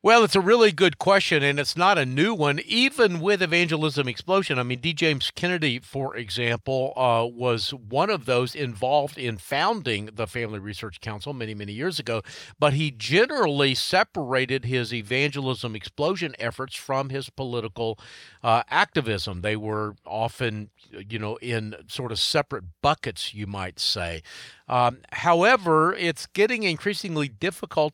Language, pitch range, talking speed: English, 115-155 Hz, 155 wpm